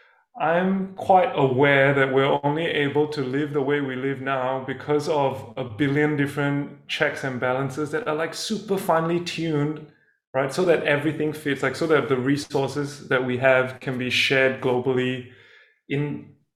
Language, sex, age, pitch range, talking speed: English, male, 20-39, 130-155 Hz, 165 wpm